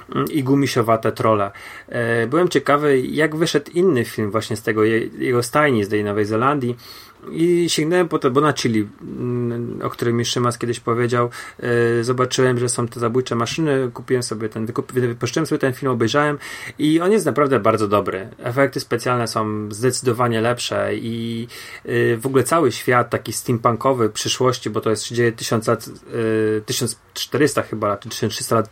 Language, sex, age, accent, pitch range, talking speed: Polish, male, 30-49, native, 115-135 Hz, 160 wpm